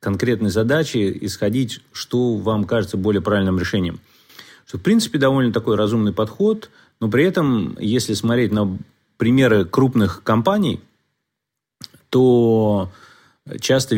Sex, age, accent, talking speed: male, 30-49, native, 115 wpm